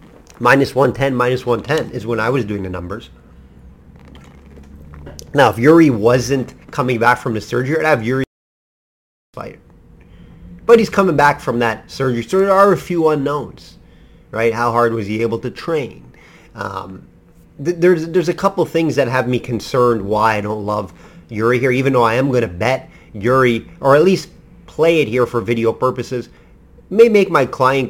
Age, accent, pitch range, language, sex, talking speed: 30-49, American, 115-150 Hz, English, male, 185 wpm